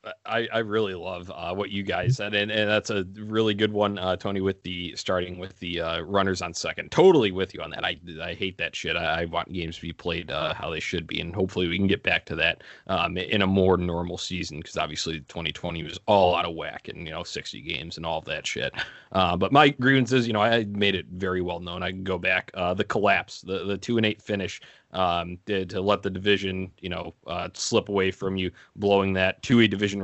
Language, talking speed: English, 245 wpm